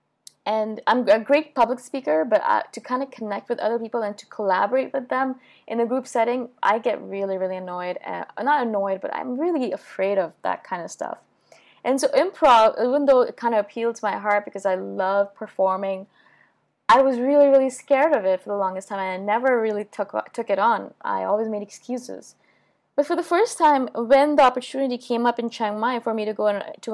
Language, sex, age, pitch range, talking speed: English, female, 20-39, 200-275 Hz, 210 wpm